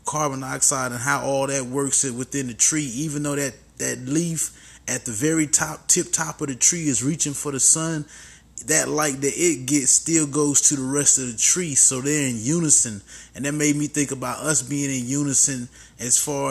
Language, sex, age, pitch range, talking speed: English, male, 20-39, 125-145 Hz, 210 wpm